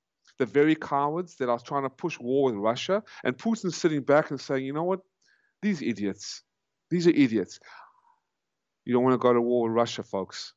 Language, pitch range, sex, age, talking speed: English, 110-145 Hz, male, 30-49, 205 wpm